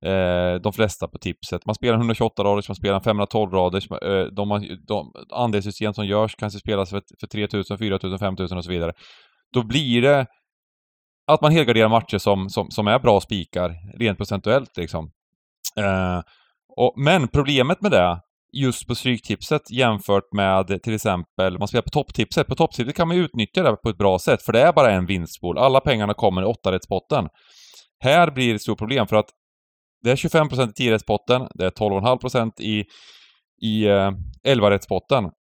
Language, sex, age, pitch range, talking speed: Swedish, male, 20-39, 95-125 Hz, 175 wpm